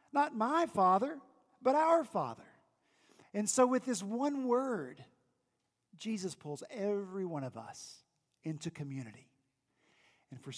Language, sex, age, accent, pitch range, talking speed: English, male, 50-69, American, 150-220 Hz, 125 wpm